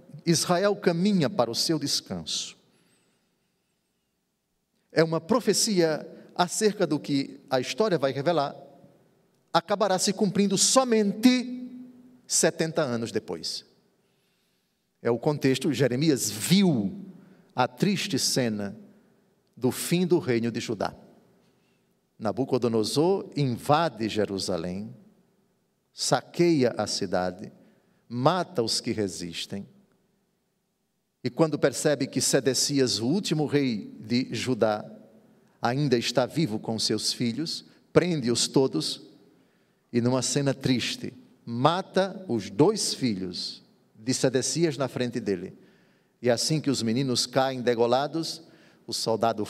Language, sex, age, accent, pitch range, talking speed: Portuguese, male, 50-69, Brazilian, 120-195 Hz, 105 wpm